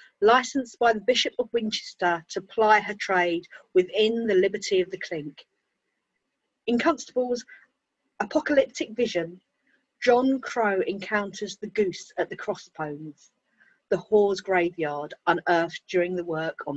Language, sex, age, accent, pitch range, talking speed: English, female, 40-59, British, 175-235 Hz, 130 wpm